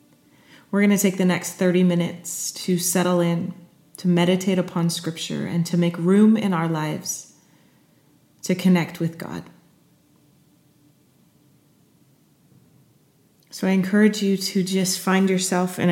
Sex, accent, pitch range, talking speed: female, American, 155-190 Hz, 130 wpm